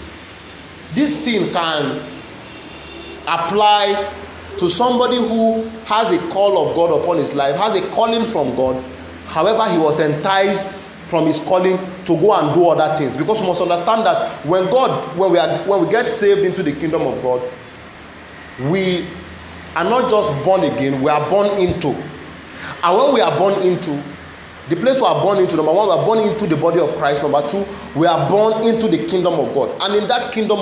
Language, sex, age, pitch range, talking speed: English, male, 30-49, 145-200 Hz, 190 wpm